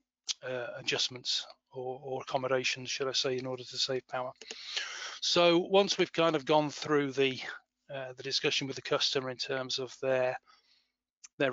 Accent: British